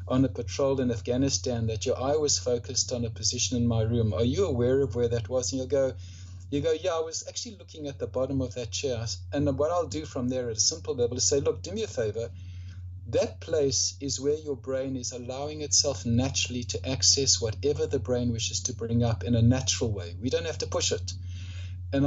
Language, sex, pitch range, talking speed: English, male, 90-130 Hz, 235 wpm